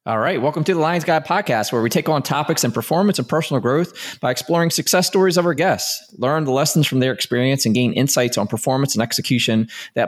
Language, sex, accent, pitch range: English, male, American, 110-140 Hz